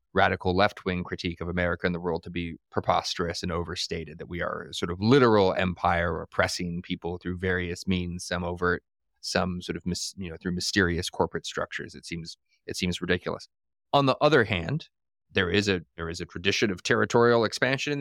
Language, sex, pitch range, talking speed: English, male, 90-125 Hz, 195 wpm